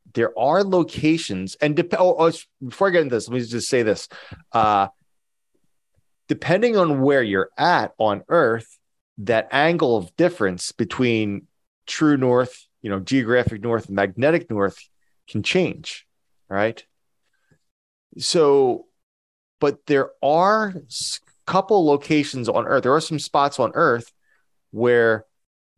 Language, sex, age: English, male, 30-49